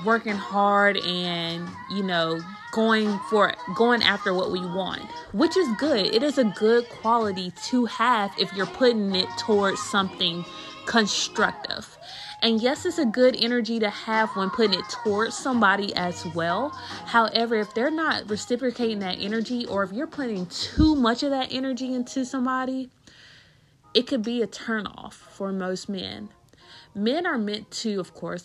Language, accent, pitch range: English, American, 180-240 Hz